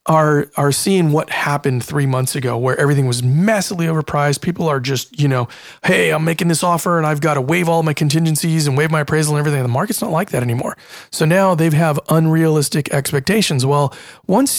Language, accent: English, American